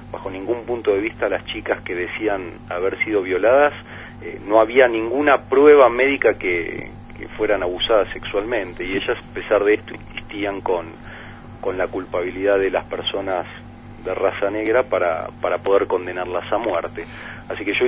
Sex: male